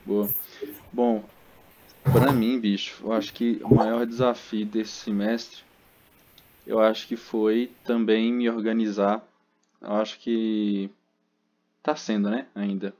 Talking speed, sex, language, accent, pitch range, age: 125 wpm, male, Portuguese, Brazilian, 100-120 Hz, 20-39